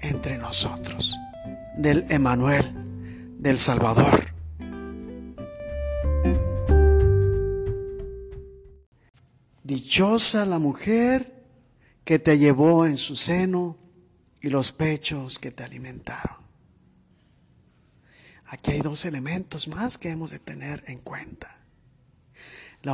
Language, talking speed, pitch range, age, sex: Spanish, 85 wpm, 125-205 Hz, 50-69, male